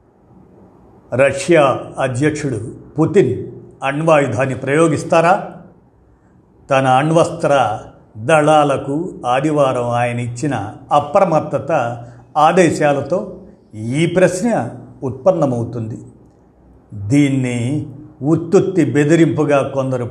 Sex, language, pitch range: male, Telugu, 130-155 Hz